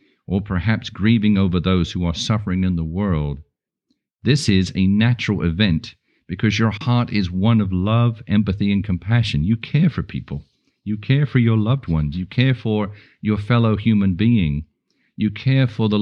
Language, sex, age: English, male, 50-69